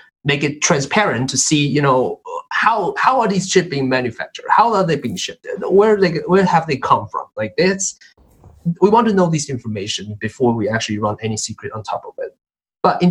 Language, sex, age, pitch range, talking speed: English, male, 20-39, 120-190 Hz, 215 wpm